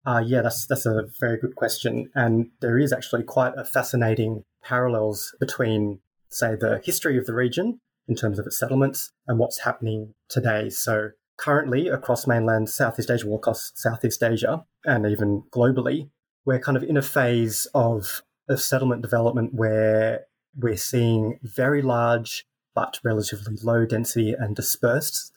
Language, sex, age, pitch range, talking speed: English, male, 20-39, 110-130 Hz, 155 wpm